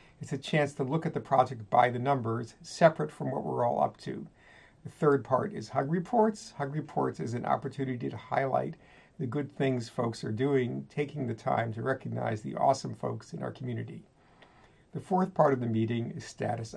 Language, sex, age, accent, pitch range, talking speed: English, male, 50-69, American, 120-145 Hz, 200 wpm